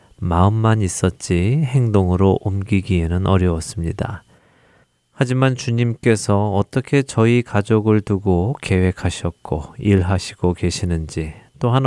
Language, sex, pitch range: Korean, male, 90-115 Hz